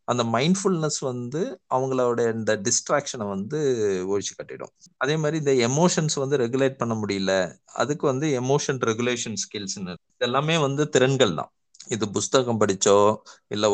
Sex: male